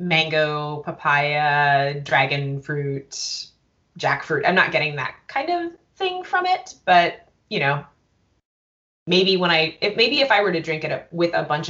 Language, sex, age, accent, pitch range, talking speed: English, female, 20-39, American, 145-185 Hz, 160 wpm